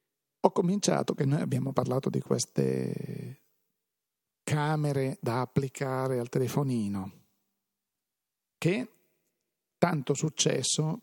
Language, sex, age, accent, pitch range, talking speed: Italian, male, 50-69, native, 130-170 Hz, 85 wpm